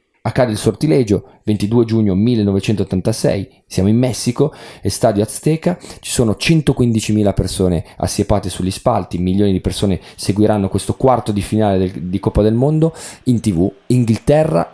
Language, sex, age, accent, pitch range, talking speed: Italian, male, 30-49, native, 95-125 Hz, 140 wpm